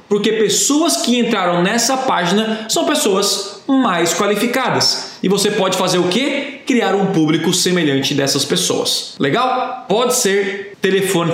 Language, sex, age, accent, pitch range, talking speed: Portuguese, male, 20-39, Brazilian, 170-230 Hz, 140 wpm